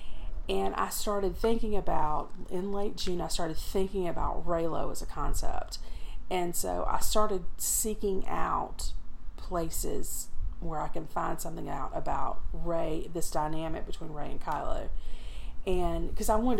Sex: female